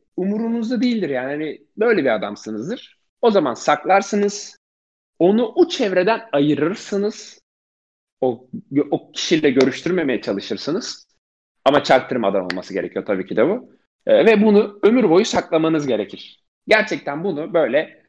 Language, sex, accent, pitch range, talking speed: Turkish, male, native, 125-180 Hz, 120 wpm